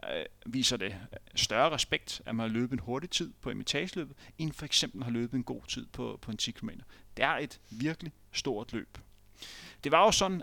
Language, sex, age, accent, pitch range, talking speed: Danish, male, 30-49, native, 115-140 Hz, 220 wpm